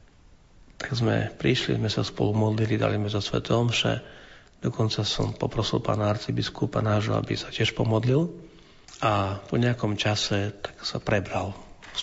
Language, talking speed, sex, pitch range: Slovak, 150 wpm, male, 100-120 Hz